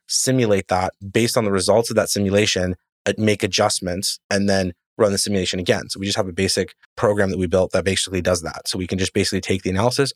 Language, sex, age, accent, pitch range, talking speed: English, male, 30-49, American, 95-110 Hz, 230 wpm